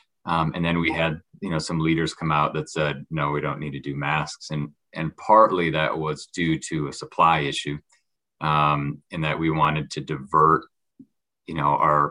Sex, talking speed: male, 200 wpm